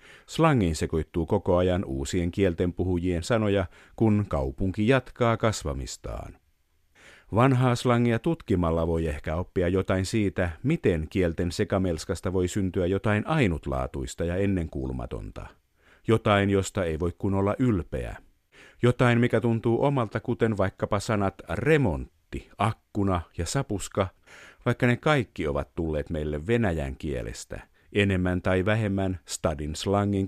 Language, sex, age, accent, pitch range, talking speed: Finnish, male, 50-69, native, 85-115 Hz, 115 wpm